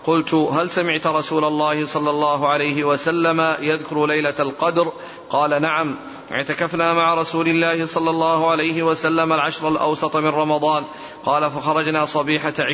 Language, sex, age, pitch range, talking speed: Arabic, male, 40-59, 150-160 Hz, 135 wpm